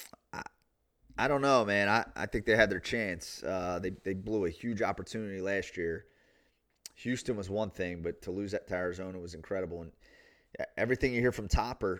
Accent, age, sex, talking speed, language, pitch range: American, 30-49, male, 190 wpm, English, 95-115 Hz